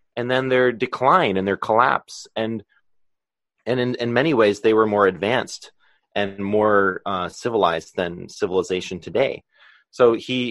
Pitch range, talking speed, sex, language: 105-130 Hz, 150 wpm, male, English